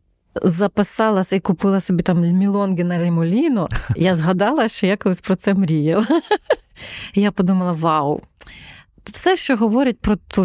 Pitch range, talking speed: 180-235 Hz, 145 wpm